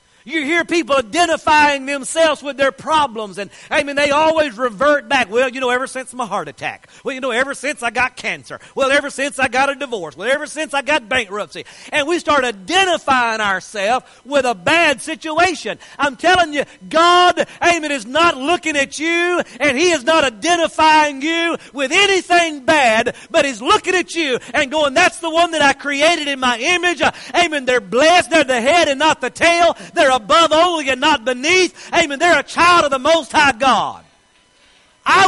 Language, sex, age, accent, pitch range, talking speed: English, male, 50-69, American, 235-315 Hz, 190 wpm